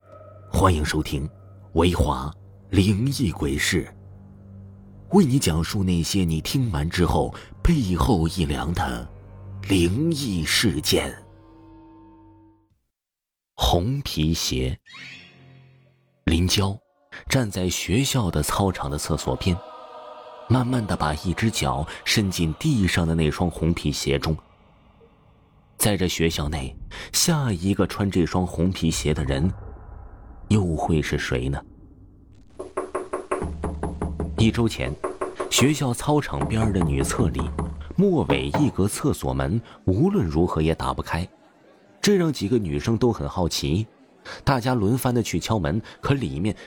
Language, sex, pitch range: Chinese, male, 80-110 Hz